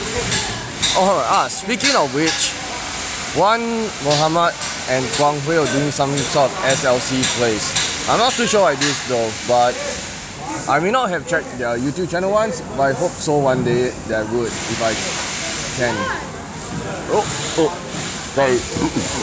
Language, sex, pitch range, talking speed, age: English, male, 125-165 Hz, 145 wpm, 20-39